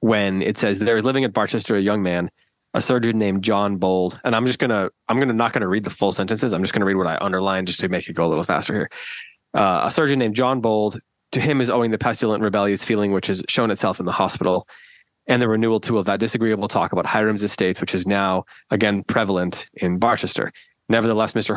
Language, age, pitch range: English, 20-39, 95-115 Hz